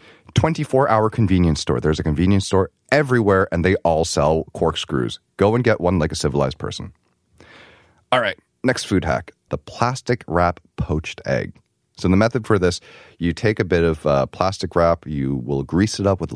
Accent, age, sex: American, 30-49, male